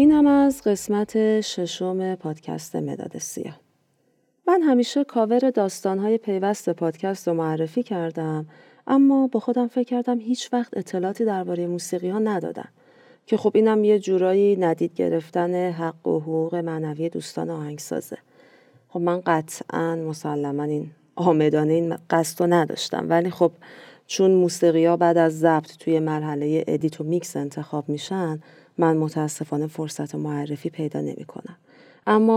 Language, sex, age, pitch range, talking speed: Persian, female, 40-59, 160-215 Hz, 135 wpm